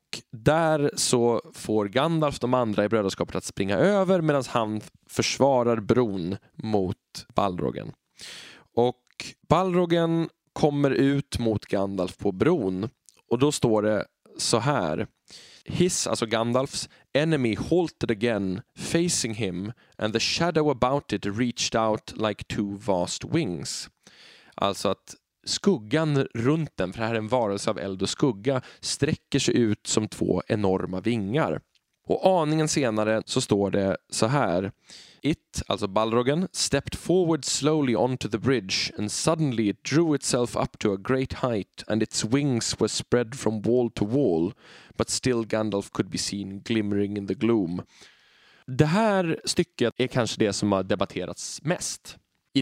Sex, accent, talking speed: male, native, 145 wpm